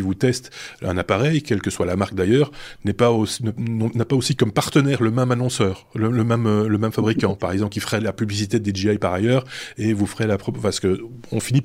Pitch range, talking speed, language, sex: 100-135 Hz, 230 wpm, French, male